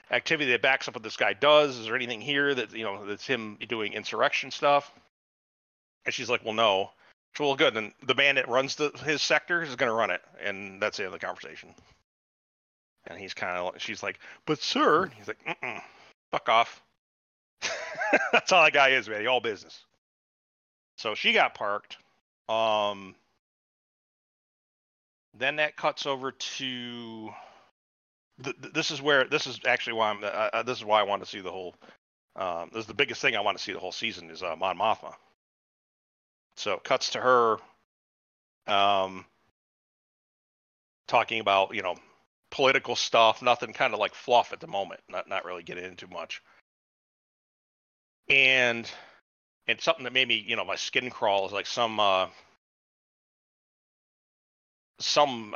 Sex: male